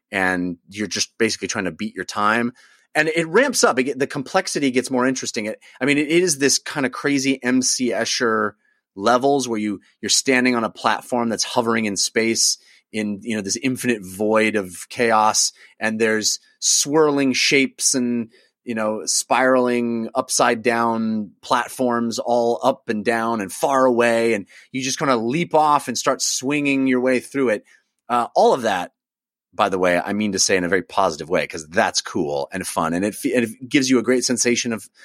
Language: English